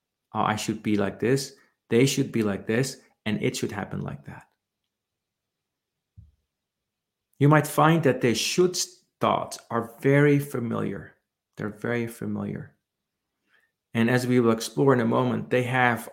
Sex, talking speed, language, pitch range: male, 145 wpm, English, 115-145 Hz